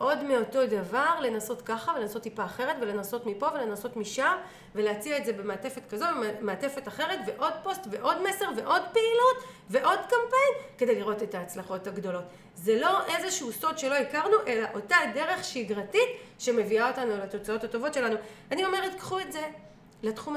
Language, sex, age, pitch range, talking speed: Hebrew, female, 30-49, 205-270 Hz, 160 wpm